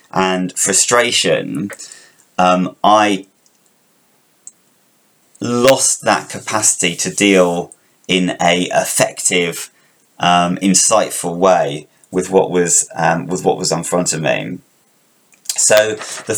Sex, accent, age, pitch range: male, British, 30-49, 90-105 Hz